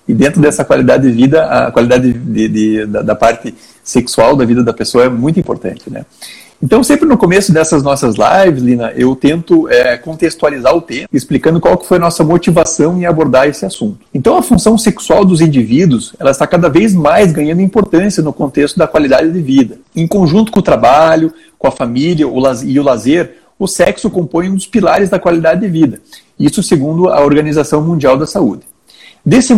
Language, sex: Portuguese, male